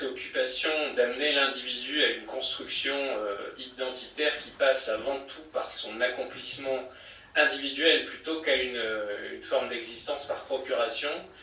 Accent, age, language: French, 20-39, French